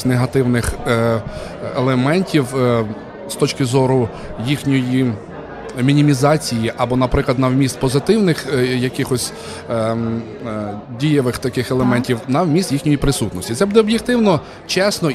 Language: Ukrainian